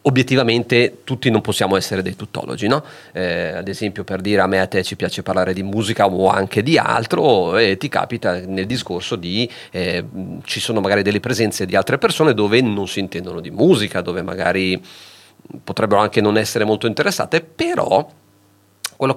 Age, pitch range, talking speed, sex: 40-59, 100-130 Hz, 170 wpm, male